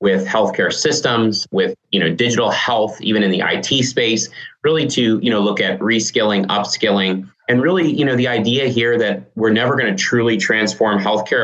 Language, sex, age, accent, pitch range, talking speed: English, male, 30-49, American, 95-110 Hz, 190 wpm